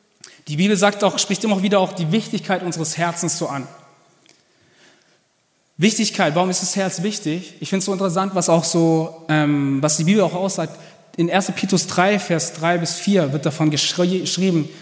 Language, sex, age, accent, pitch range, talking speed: German, male, 20-39, German, 165-225 Hz, 180 wpm